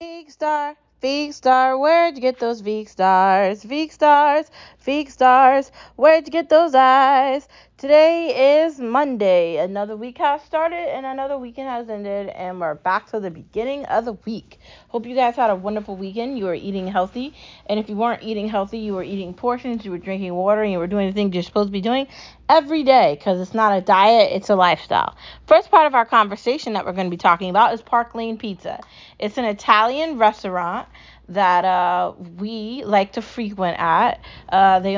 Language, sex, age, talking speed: English, female, 20-39, 195 wpm